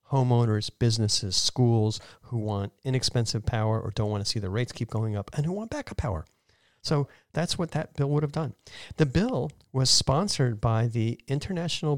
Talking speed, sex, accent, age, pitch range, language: 185 wpm, male, American, 40-59, 105-135 Hz, English